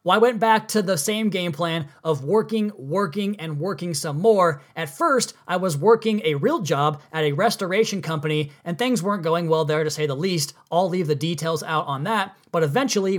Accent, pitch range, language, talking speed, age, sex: American, 155-195 Hz, English, 215 wpm, 30-49, male